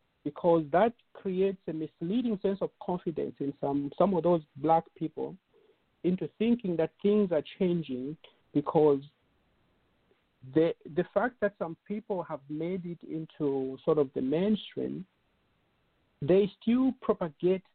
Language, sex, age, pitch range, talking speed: English, male, 50-69, 145-185 Hz, 130 wpm